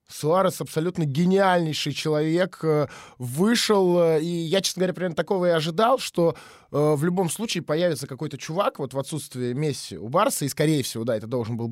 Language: Russian